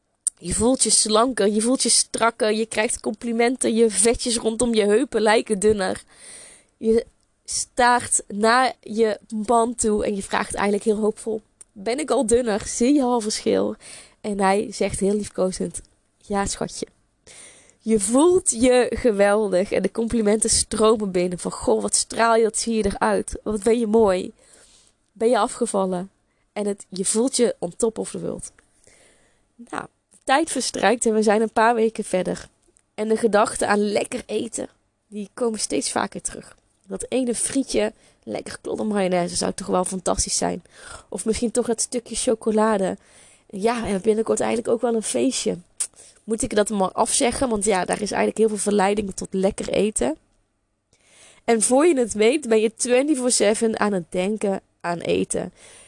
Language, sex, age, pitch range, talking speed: Dutch, female, 20-39, 205-235 Hz, 165 wpm